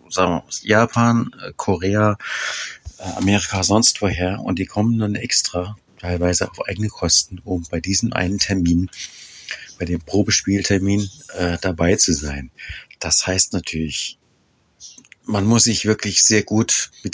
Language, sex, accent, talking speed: German, male, German, 135 wpm